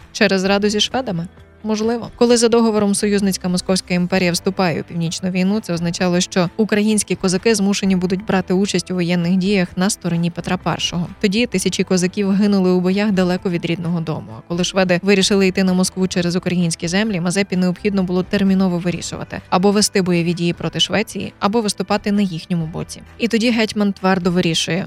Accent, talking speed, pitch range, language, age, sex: native, 175 wpm, 180-205 Hz, Ukrainian, 20-39, female